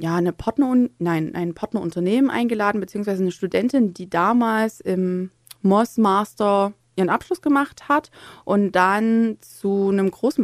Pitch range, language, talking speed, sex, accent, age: 180-230 Hz, German, 120 wpm, female, German, 20-39